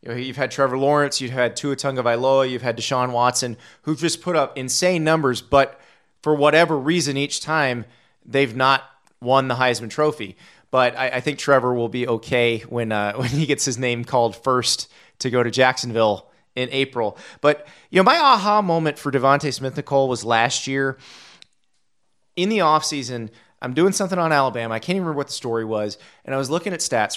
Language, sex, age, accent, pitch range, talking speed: English, male, 30-49, American, 125-175 Hz, 200 wpm